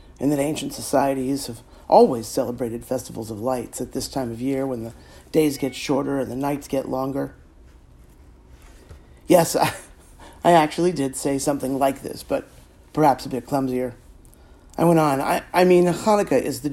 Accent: American